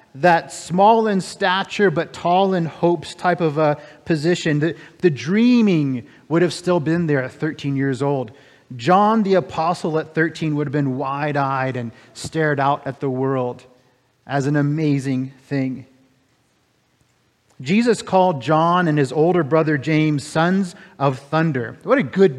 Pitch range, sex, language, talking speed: 135-180 Hz, male, English, 155 wpm